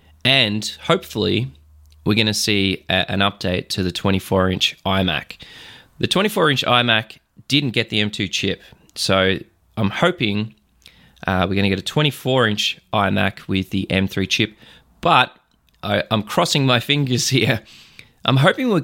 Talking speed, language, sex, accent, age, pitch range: 140 wpm, English, male, Australian, 20-39, 95-115 Hz